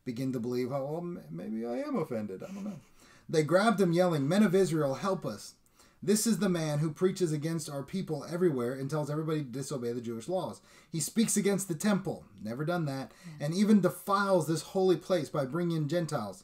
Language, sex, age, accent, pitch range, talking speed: English, male, 30-49, American, 130-175 Hz, 205 wpm